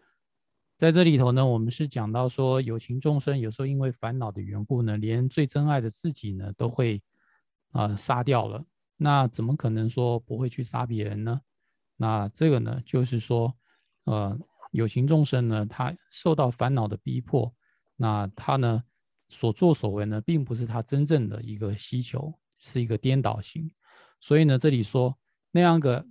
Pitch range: 115-140 Hz